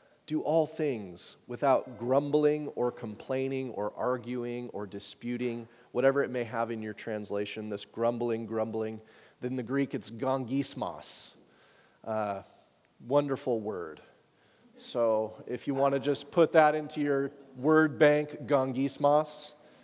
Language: English